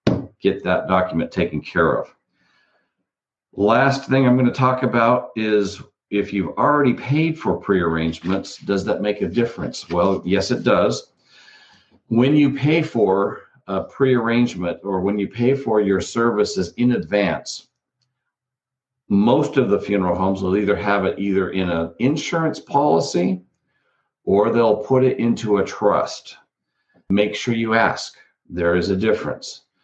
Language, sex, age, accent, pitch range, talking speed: English, male, 50-69, American, 95-120 Hz, 145 wpm